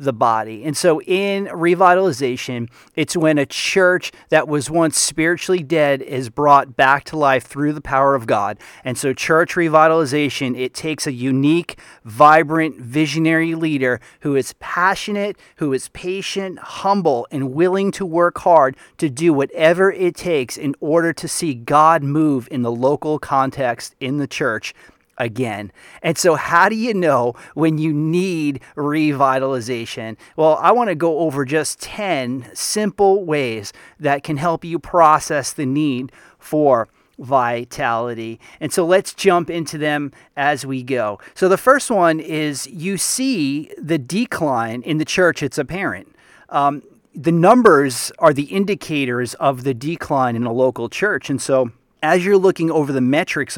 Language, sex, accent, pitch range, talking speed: English, male, American, 135-175 Hz, 155 wpm